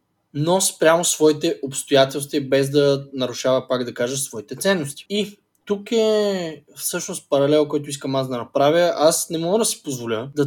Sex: male